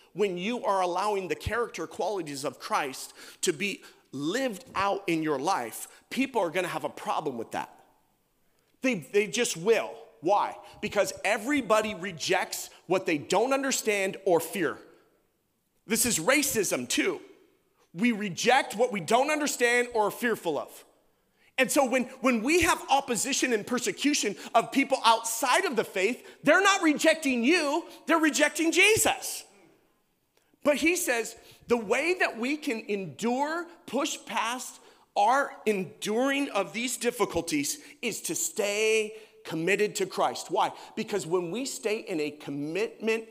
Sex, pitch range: male, 190-295 Hz